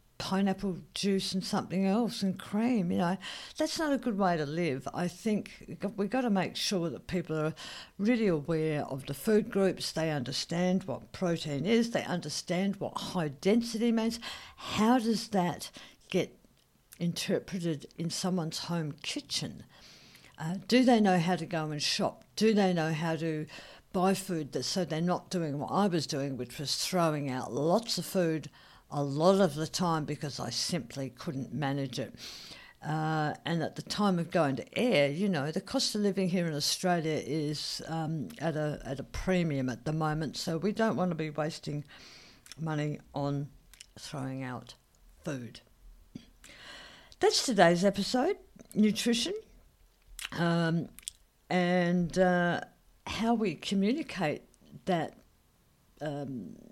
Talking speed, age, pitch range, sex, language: 155 wpm, 60-79, 155-200 Hz, female, English